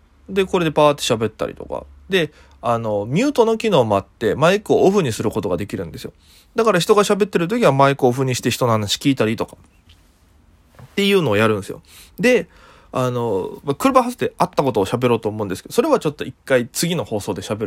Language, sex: Japanese, male